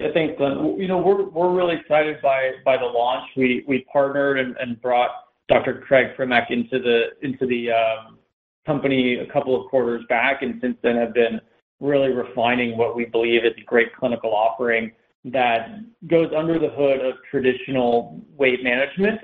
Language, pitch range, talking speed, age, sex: English, 115-135 Hz, 180 wpm, 30-49, male